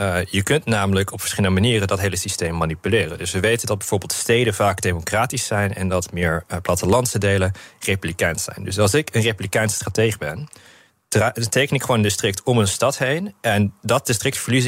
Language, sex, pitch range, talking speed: Dutch, male, 95-115 Hz, 190 wpm